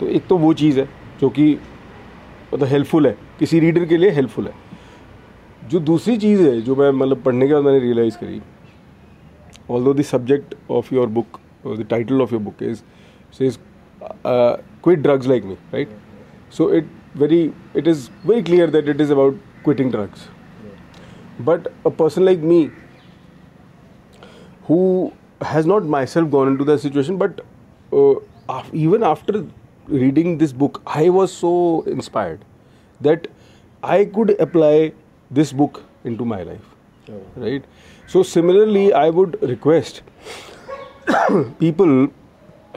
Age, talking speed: 40-59, 145 wpm